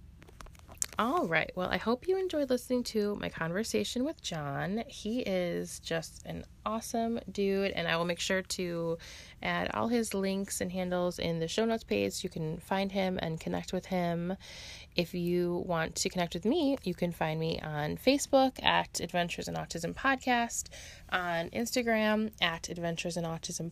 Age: 20-39